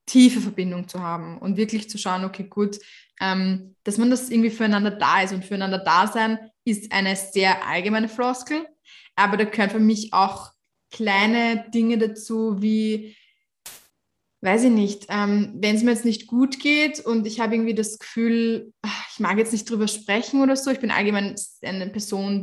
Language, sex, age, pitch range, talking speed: German, female, 20-39, 195-225 Hz, 175 wpm